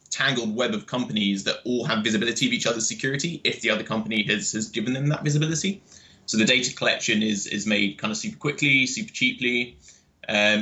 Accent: British